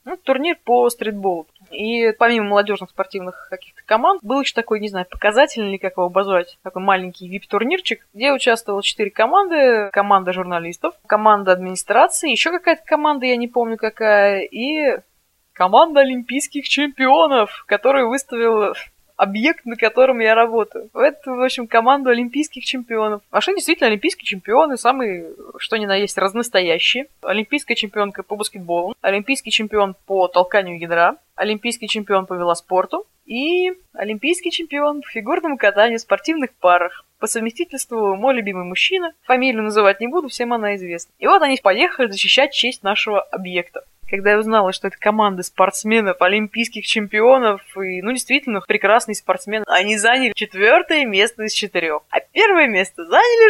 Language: Russian